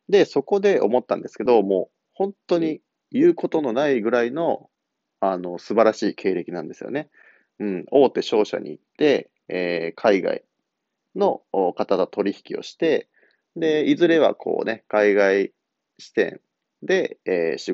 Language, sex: Japanese, male